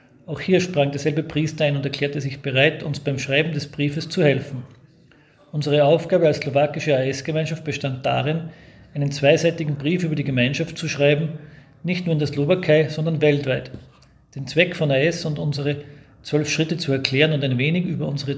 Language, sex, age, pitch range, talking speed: English, male, 40-59, 140-165 Hz, 175 wpm